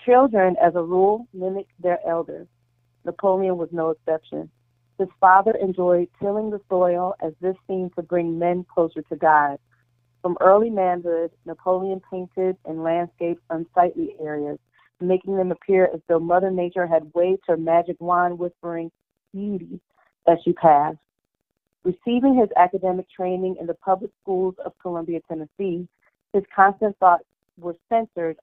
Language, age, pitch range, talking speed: English, 40-59, 165-185 Hz, 145 wpm